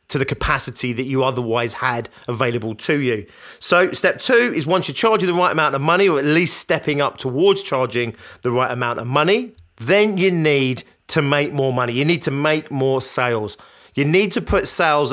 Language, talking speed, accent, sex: English, 205 wpm, British, male